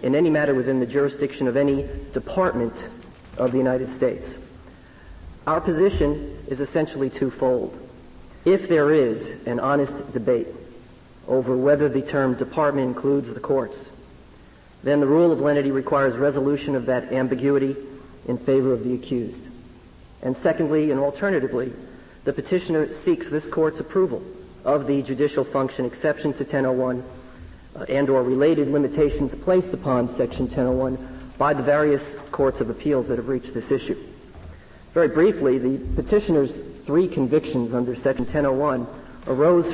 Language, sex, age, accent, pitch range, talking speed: English, male, 50-69, American, 130-150 Hz, 140 wpm